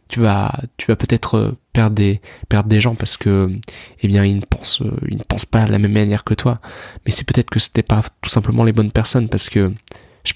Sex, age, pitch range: male, 20-39, 100-115 Hz